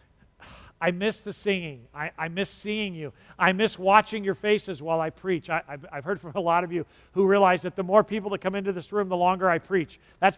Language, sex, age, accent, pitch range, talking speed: English, male, 50-69, American, 180-250 Hz, 235 wpm